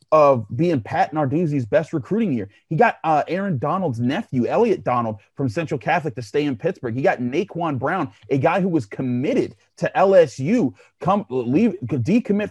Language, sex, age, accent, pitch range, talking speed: English, male, 30-49, American, 125-170 Hz, 175 wpm